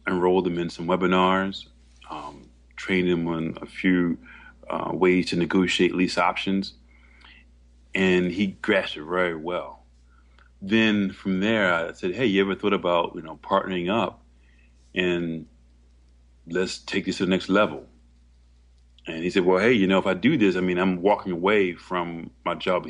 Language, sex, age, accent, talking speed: English, male, 30-49, American, 170 wpm